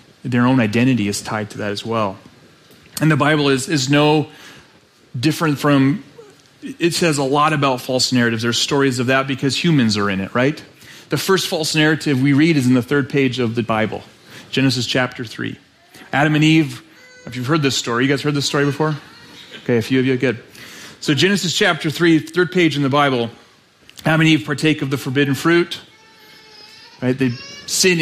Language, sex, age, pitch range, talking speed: English, male, 30-49, 135-175 Hz, 195 wpm